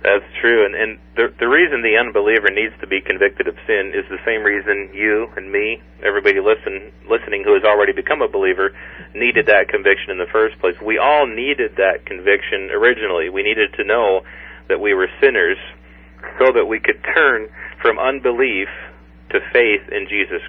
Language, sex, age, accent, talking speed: English, male, 40-59, American, 180 wpm